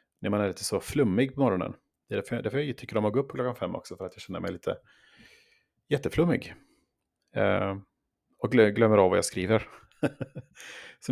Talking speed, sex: 205 wpm, male